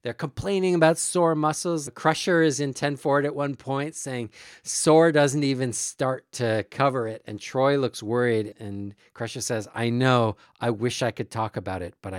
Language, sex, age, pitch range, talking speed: English, male, 40-59, 120-155 Hz, 190 wpm